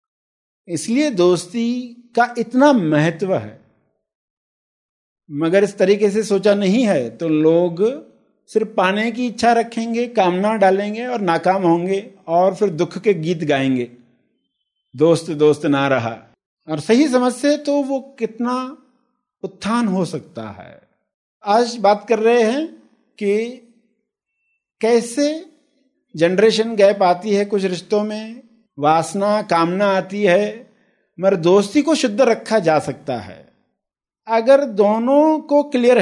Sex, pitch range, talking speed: male, 170-235 Hz, 125 wpm